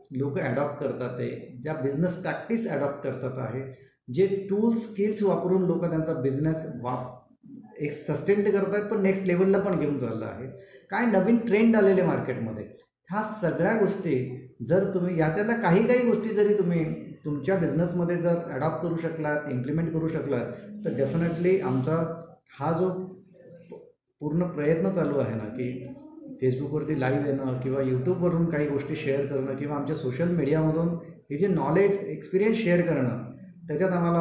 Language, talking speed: Marathi, 140 wpm